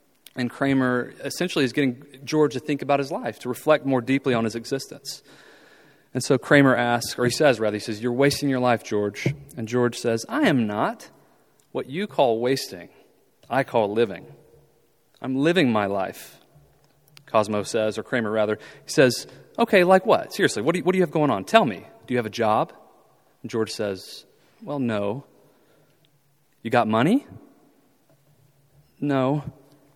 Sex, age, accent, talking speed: male, 30-49, American, 170 wpm